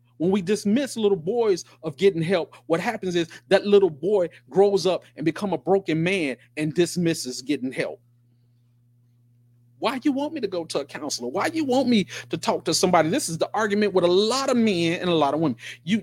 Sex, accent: male, American